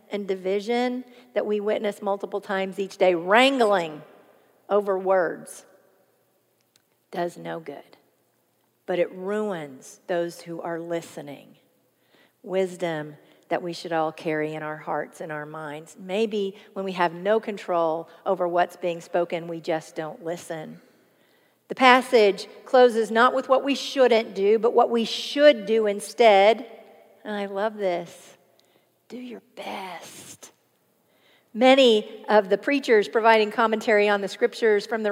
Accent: American